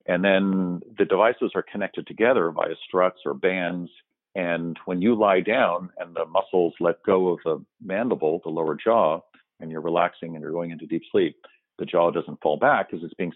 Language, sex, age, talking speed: English, male, 50-69, 200 wpm